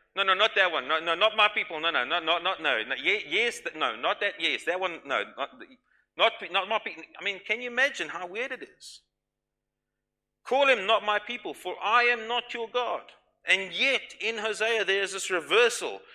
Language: English